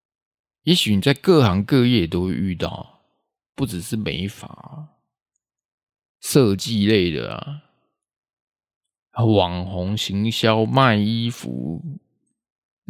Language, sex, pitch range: Chinese, male, 100-140 Hz